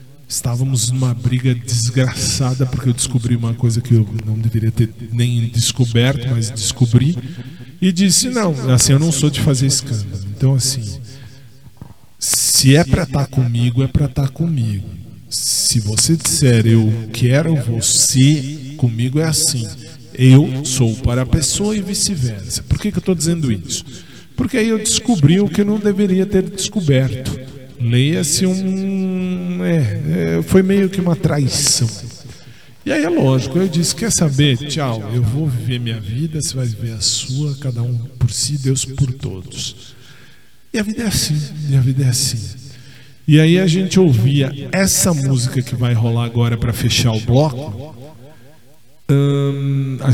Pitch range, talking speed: 120-150 Hz, 160 wpm